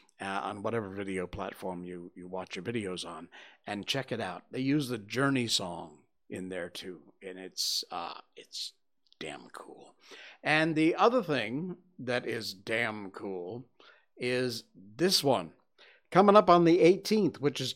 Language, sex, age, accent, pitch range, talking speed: English, male, 60-79, American, 115-160 Hz, 160 wpm